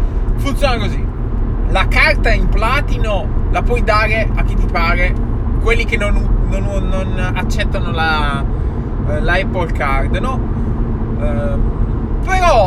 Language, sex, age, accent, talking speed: Italian, male, 20-39, native, 130 wpm